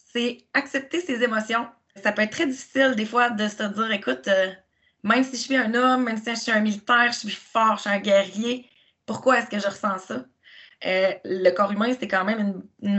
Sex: female